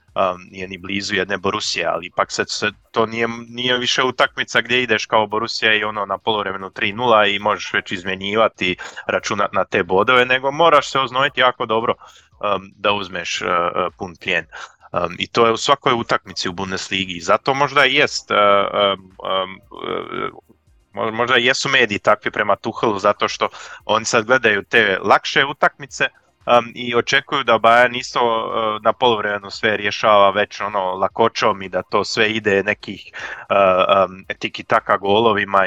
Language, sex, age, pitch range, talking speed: Croatian, male, 20-39, 95-115 Hz, 165 wpm